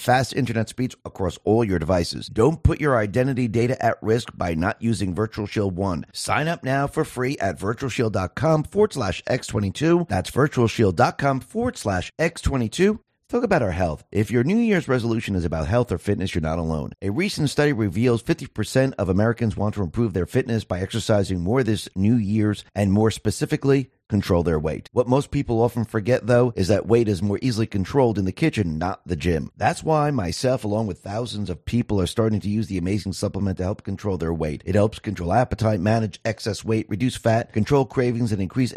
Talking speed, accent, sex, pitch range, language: 200 wpm, American, male, 100-130 Hz, English